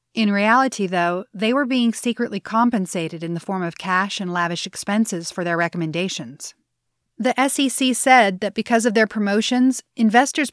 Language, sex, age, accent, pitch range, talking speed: English, female, 30-49, American, 180-225 Hz, 160 wpm